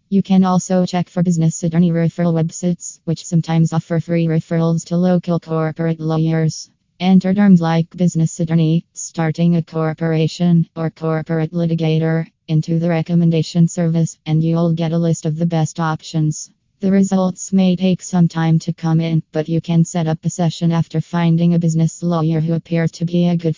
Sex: female